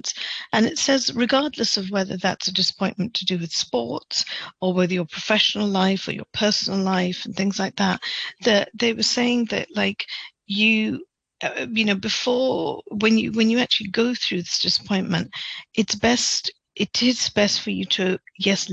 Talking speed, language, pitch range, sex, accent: 175 wpm, English, 190-225 Hz, female, British